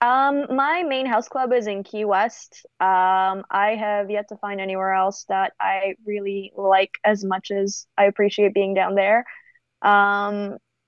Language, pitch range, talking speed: English, 195-235 Hz, 165 wpm